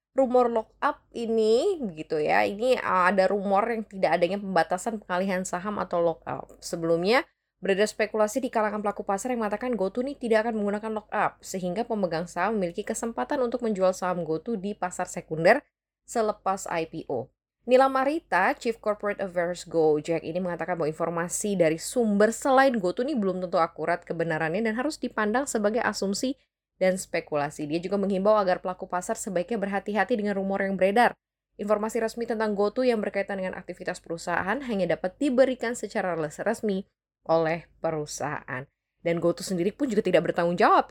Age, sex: 10-29, female